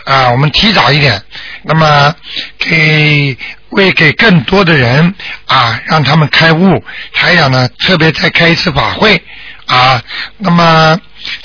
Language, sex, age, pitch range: Chinese, male, 50-69, 150-195 Hz